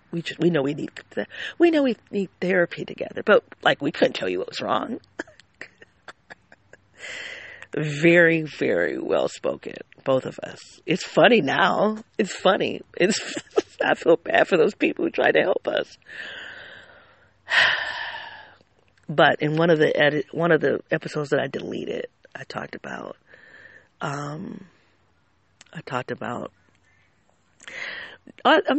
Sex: female